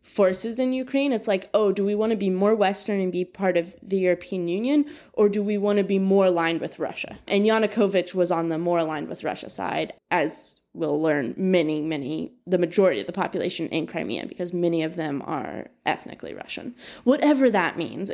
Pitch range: 170-210 Hz